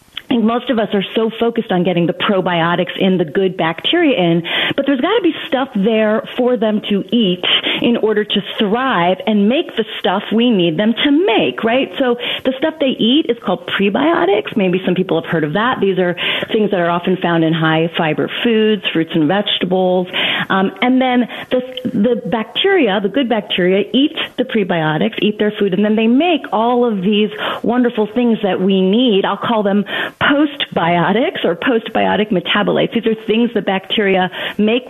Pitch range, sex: 185-245 Hz, female